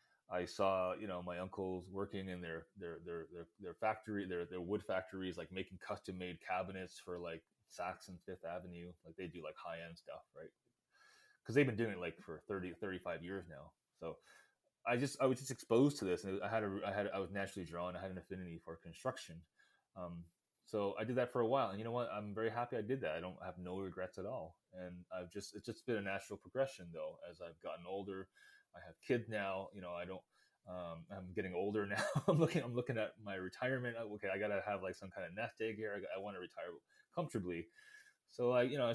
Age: 20-39